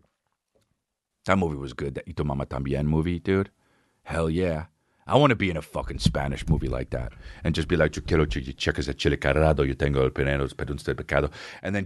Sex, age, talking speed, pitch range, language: male, 40-59, 165 wpm, 75-110 Hz, English